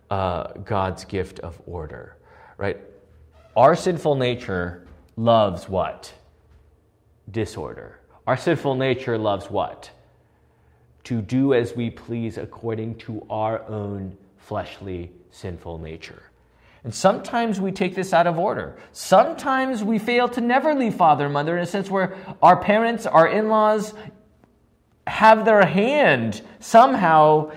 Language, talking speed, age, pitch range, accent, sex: English, 125 wpm, 30-49, 110-175 Hz, American, male